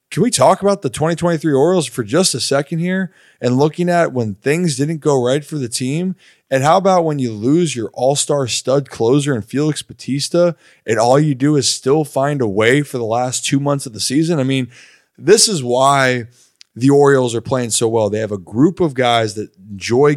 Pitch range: 120-150 Hz